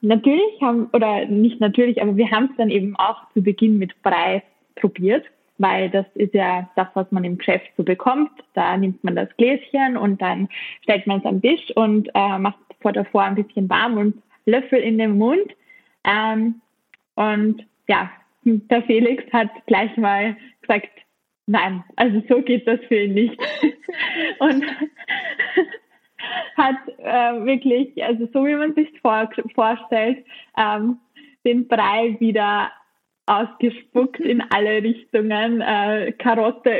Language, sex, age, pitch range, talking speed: German, female, 20-39, 205-260 Hz, 150 wpm